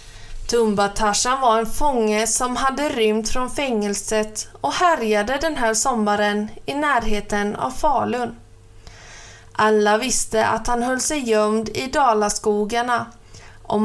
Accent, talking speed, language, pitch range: native, 120 wpm, Swedish, 205-240 Hz